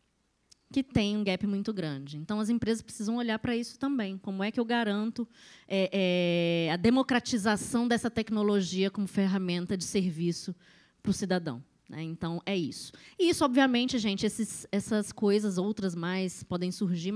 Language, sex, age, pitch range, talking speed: Portuguese, female, 20-39, 195-235 Hz, 150 wpm